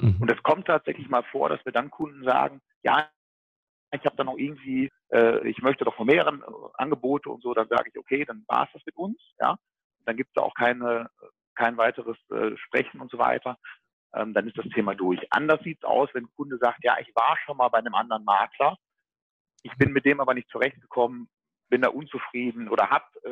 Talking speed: 215 wpm